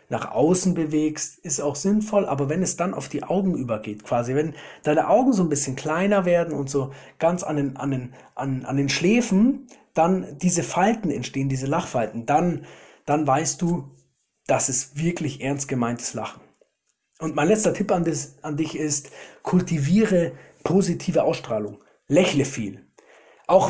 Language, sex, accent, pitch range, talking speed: German, male, German, 145-185 Hz, 165 wpm